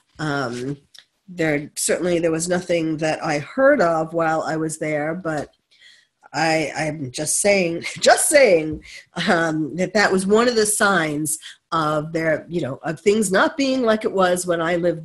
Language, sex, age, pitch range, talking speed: English, female, 50-69, 160-210 Hz, 170 wpm